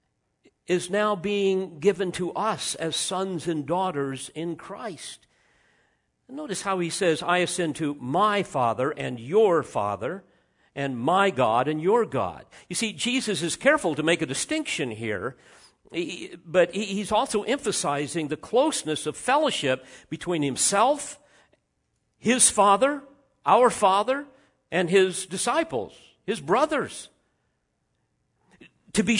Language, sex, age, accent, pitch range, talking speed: English, male, 50-69, American, 155-215 Hz, 125 wpm